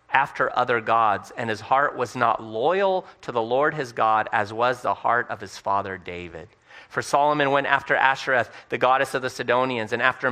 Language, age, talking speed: English, 30-49, 200 wpm